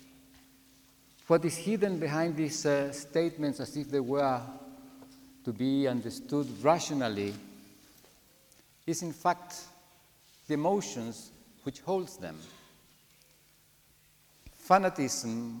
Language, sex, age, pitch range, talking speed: German, male, 50-69, 125-165 Hz, 90 wpm